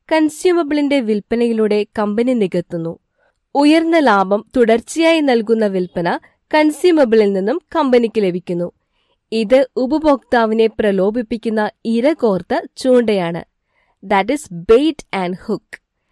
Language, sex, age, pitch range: Malayalam, female, 20-39, 205-280 Hz